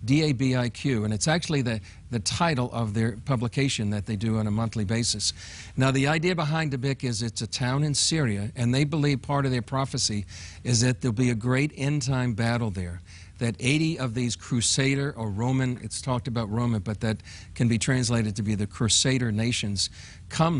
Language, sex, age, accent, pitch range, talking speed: English, male, 50-69, American, 105-135 Hz, 190 wpm